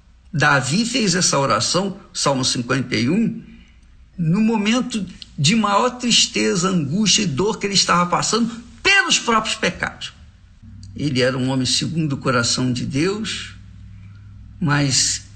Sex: male